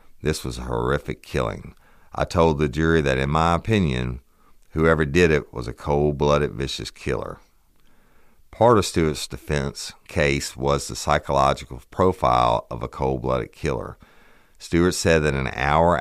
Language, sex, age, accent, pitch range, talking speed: English, male, 50-69, American, 65-80 Hz, 155 wpm